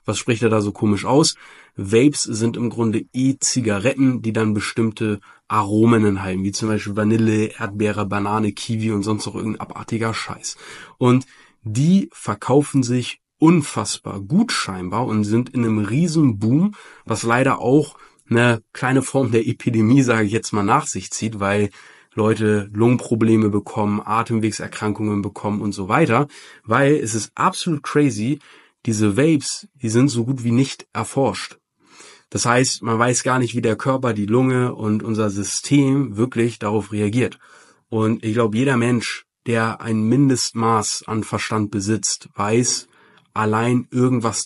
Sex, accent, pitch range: male, German, 110-130 Hz